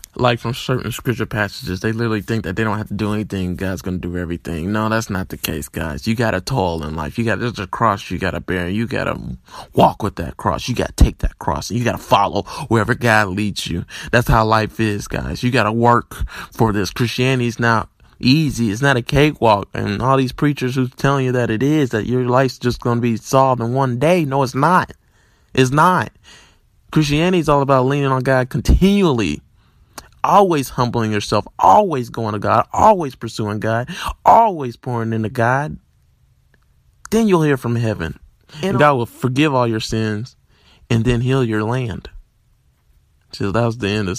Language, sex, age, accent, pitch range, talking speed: English, male, 20-39, American, 105-145 Hz, 195 wpm